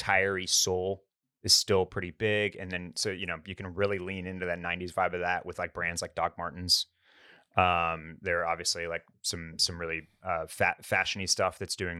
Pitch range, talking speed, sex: 90-105 Hz, 200 wpm, male